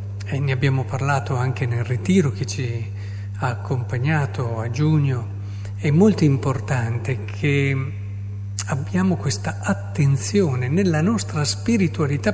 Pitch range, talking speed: 100-135 Hz, 110 wpm